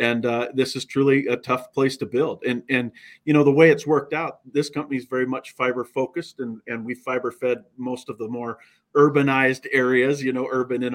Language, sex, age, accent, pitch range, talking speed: English, male, 40-59, American, 120-140 Hz, 225 wpm